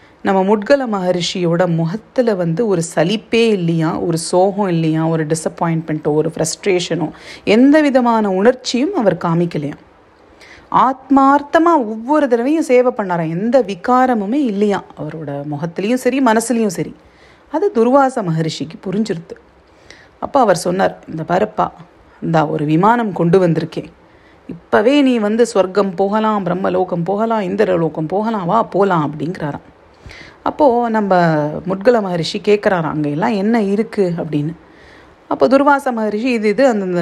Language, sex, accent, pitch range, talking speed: Tamil, female, native, 170-235 Hz, 115 wpm